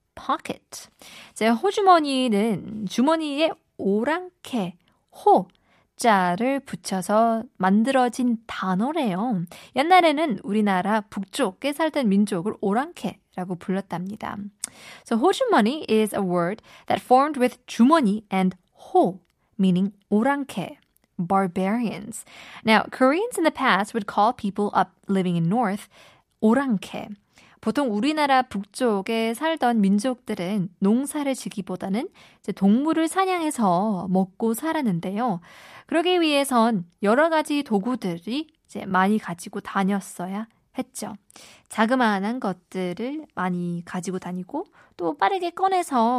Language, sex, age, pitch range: Korean, female, 20-39, 195-270 Hz